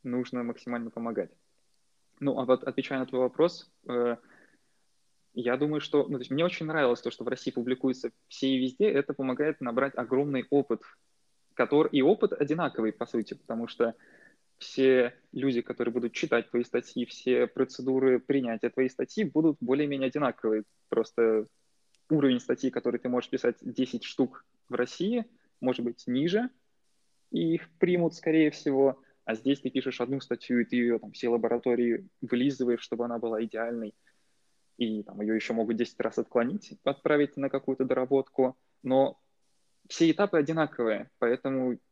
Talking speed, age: 155 wpm, 20-39